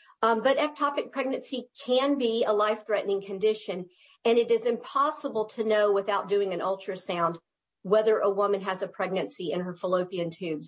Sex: female